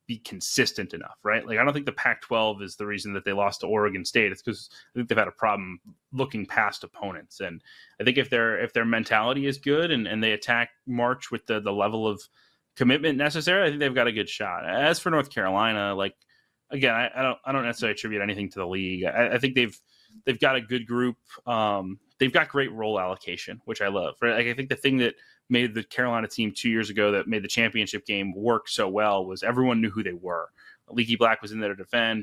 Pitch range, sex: 100-120 Hz, male